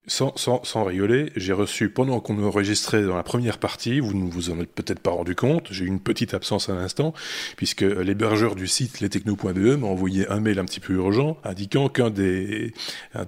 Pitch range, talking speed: 95-115 Hz, 210 wpm